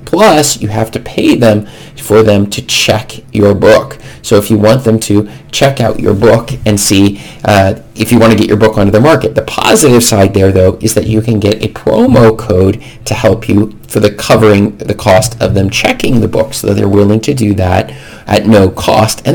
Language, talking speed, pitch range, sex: English, 220 wpm, 105-115 Hz, male